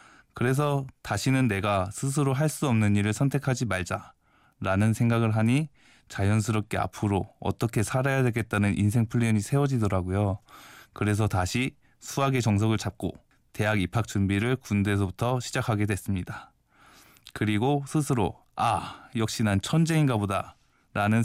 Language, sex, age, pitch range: Korean, male, 20-39, 100-125 Hz